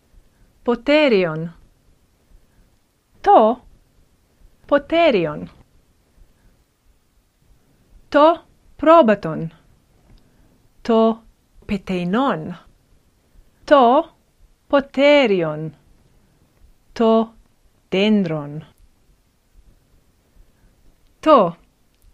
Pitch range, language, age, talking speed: 165-265 Hz, Greek, 30-49, 35 wpm